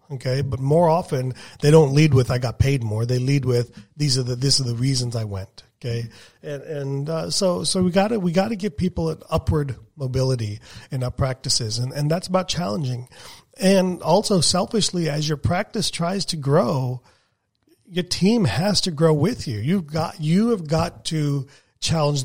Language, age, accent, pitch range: English, 40-59, American, 125-165 Hz